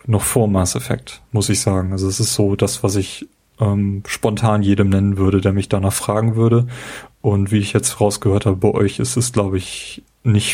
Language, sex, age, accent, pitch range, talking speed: German, male, 30-49, German, 105-120 Hz, 210 wpm